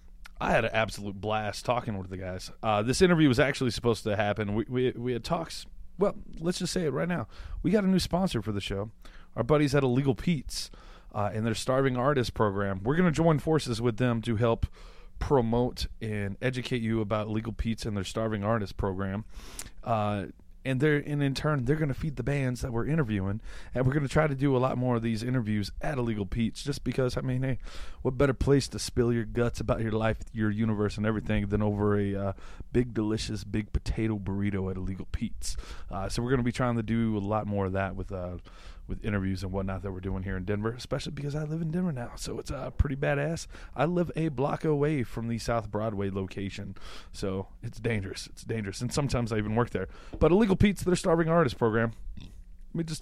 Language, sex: English, male